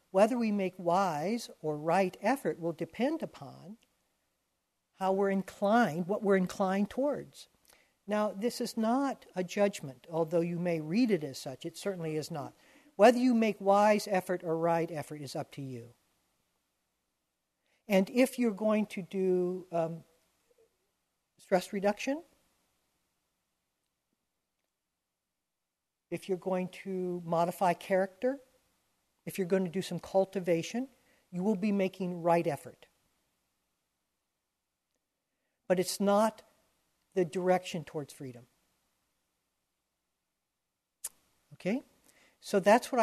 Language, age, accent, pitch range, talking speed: English, 60-79, American, 170-220 Hz, 120 wpm